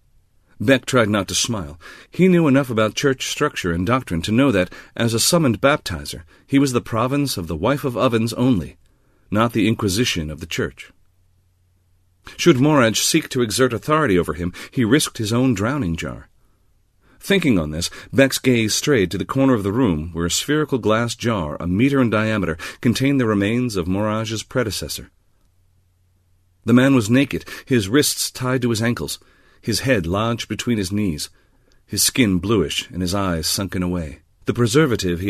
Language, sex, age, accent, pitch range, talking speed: English, male, 40-59, American, 90-125 Hz, 175 wpm